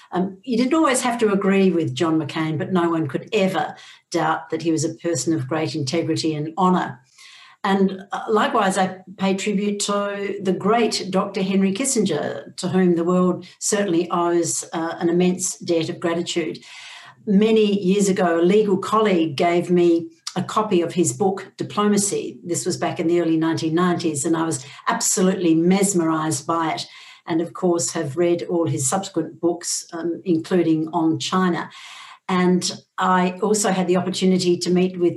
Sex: female